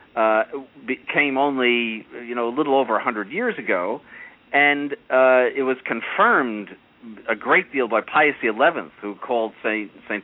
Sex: male